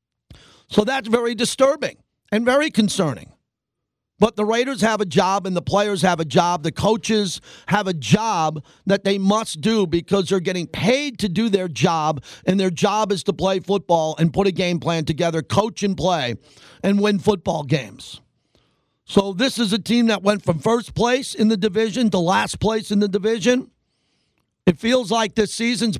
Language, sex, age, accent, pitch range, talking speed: English, male, 50-69, American, 175-220 Hz, 185 wpm